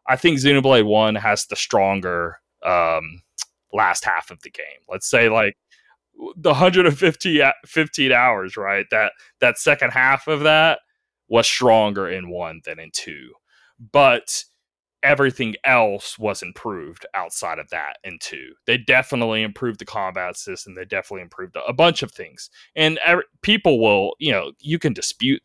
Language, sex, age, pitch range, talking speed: English, male, 30-49, 115-155 Hz, 155 wpm